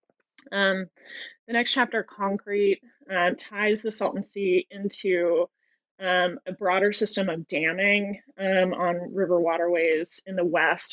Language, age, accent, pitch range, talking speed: English, 20-39, American, 175-200 Hz, 120 wpm